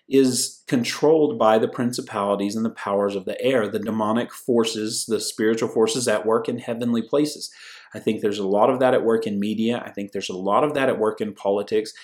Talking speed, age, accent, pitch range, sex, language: 220 wpm, 30-49, American, 110-140 Hz, male, English